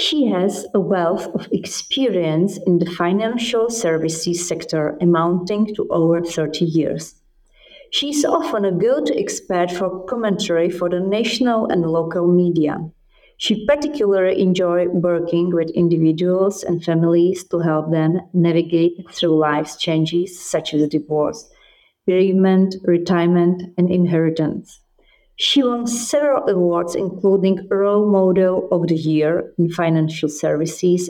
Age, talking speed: 40-59, 125 wpm